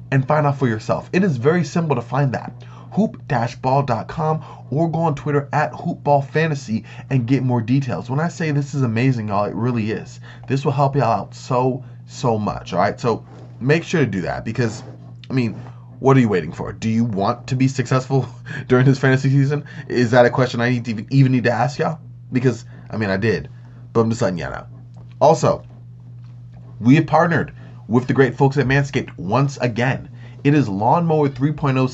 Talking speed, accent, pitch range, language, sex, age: 205 wpm, American, 120-145 Hz, English, male, 20-39